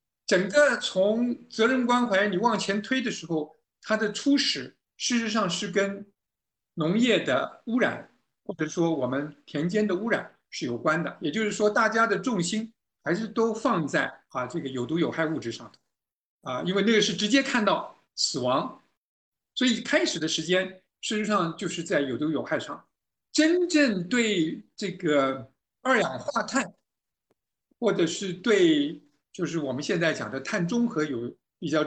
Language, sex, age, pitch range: Chinese, male, 50-69, 160-230 Hz